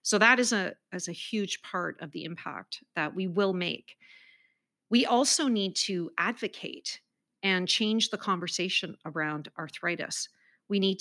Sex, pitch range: female, 170-210 Hz